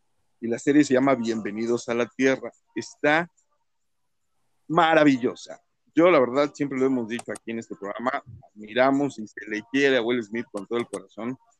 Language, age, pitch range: Spanish, 50-69, 115-140 Hz